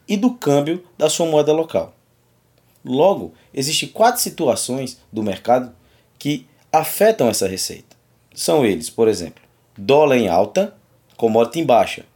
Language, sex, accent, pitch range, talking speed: Portuguese, male, Brazilian, 115-160 Hz, 135 wpm